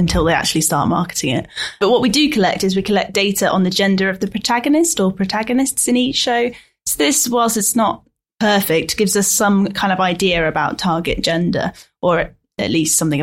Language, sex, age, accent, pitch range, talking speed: English, female, 10-29, British, 185-235 Hz, 205 wpm